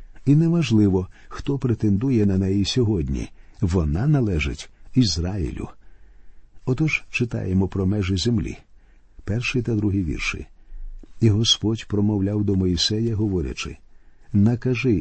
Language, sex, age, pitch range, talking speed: Ukrainian, male, 50-69, 95-125 Hz, 105 wpm